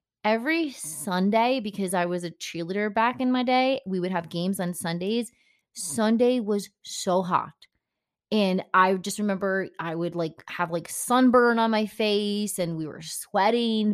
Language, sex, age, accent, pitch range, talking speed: English, female, 30-49, American, 180-230 Hz, 165 wpm